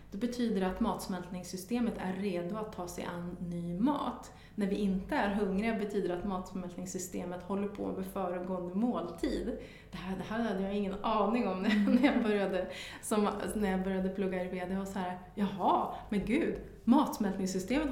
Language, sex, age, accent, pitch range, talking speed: Swedish, female, 30-49, native, 185-225 Hz, 175 wpm